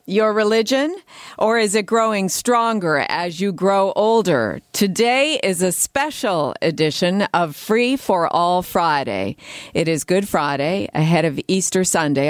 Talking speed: 140 wpm